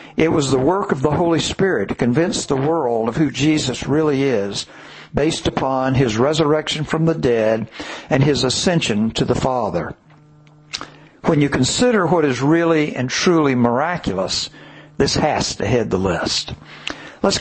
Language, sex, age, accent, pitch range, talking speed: English, male, 60-79, American, 130-160 Hz, 160 wpm